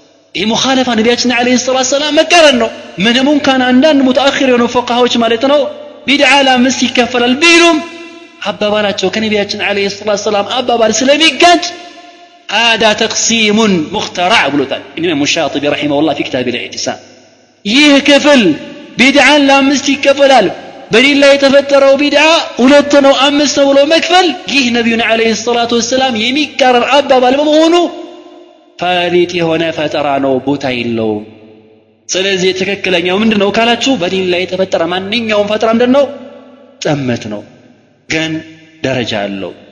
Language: Amharic